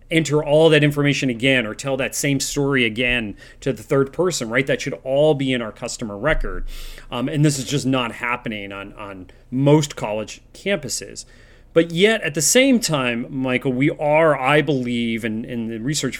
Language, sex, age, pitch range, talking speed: English, male, 30-49, 120-150 Hz, 190 wpm